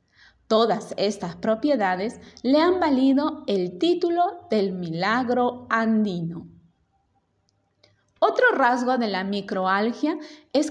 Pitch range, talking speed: 195-265 Hz, 95 wpm